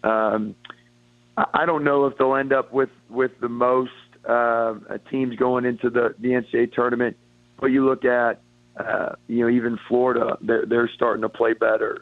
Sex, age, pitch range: male, 40-59, 115-125 Hz